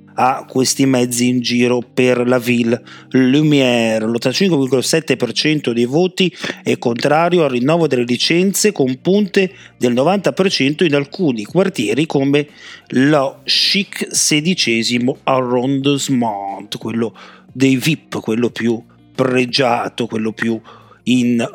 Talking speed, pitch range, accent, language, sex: 110 wpm, 120-165 Hz, native, Italian, male